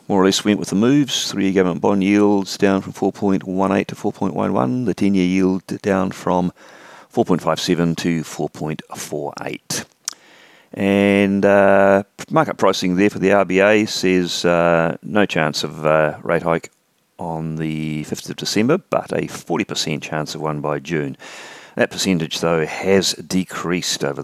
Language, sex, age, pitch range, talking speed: English, male, 40-59, 85-105 Hz, 145 wpm